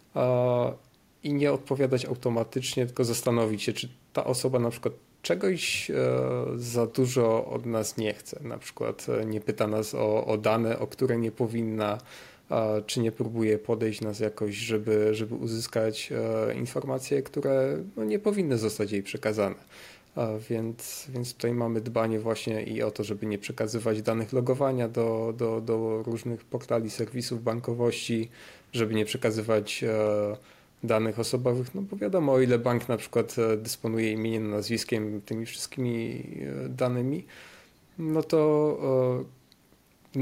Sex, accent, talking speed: male, native, 135 wpm